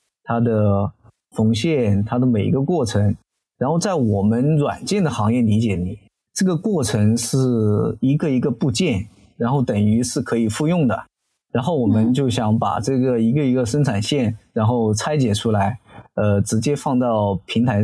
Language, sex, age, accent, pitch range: Chinese, male, 20-39, native, 105-130 Hz